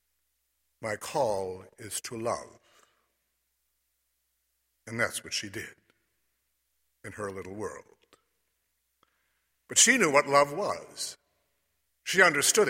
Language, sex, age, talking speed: English, male, 60-79, 105 wpm